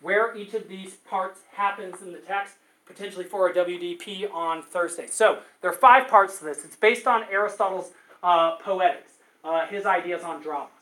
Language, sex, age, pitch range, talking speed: English, male, 30-49, 175-210 Hz, 185 wpm